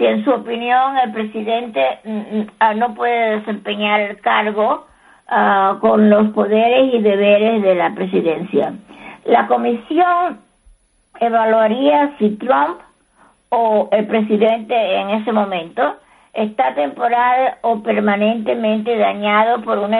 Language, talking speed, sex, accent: Spanish, 110 wpm, female, American